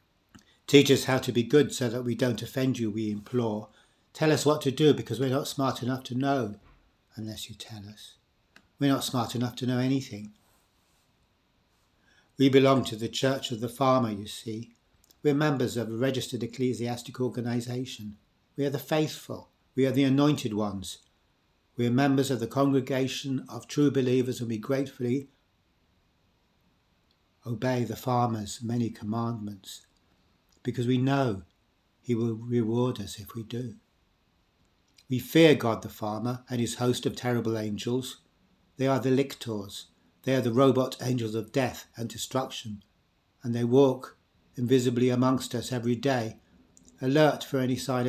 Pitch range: 110-130 Hz